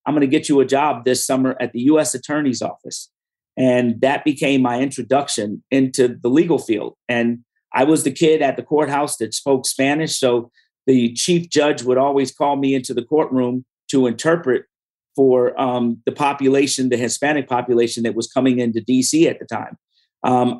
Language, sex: English, male